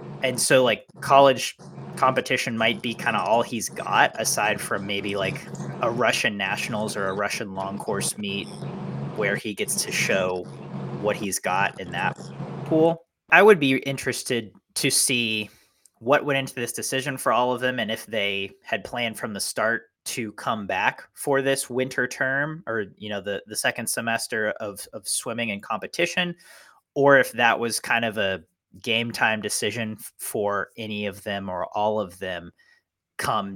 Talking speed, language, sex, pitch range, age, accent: 175 wpm, English, male, 100-130 Hz, 20-39, American